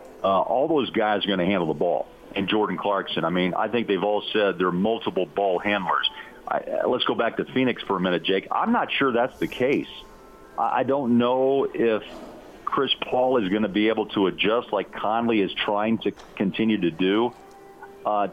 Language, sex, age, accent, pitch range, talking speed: English, male, 50-69, American, 95-110 Hz, 205 wpm